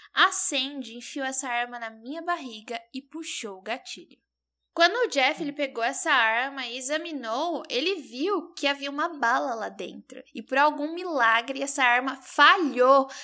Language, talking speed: Portuguese, 165 wpm